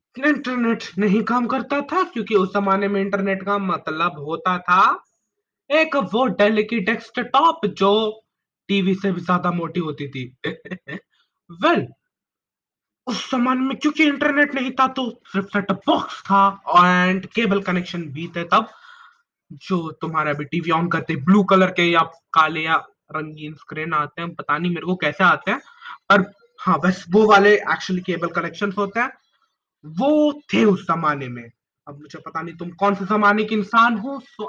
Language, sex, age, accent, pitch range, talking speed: Hindi, male, 20-39, native, 175-280 Hz, 165 wpm